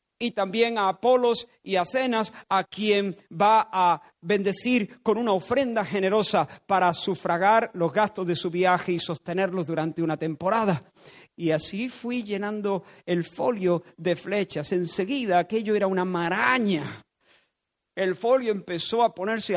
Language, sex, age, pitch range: Spanish, male, 50-69, 160-200 Hz